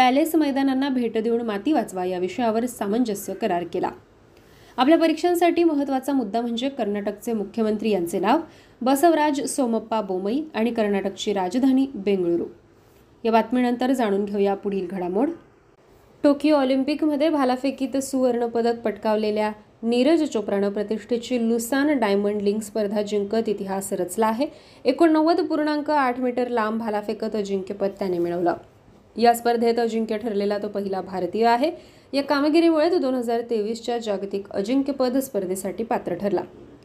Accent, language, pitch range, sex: native, Marathi, 205-265 Hz, female